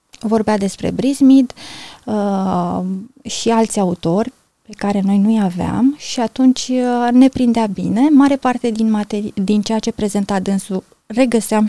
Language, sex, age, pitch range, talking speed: Romanian, female, 20-39, 200-250 Hz, 140 wpm